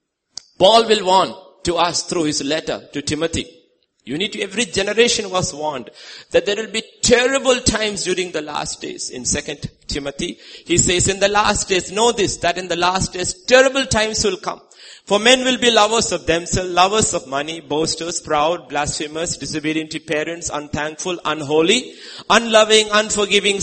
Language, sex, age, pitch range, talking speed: English, male, 50-69, 135-200 Hz, 170 wpm